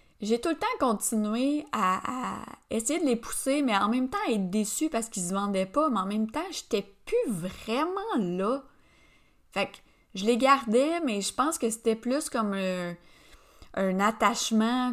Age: 20-39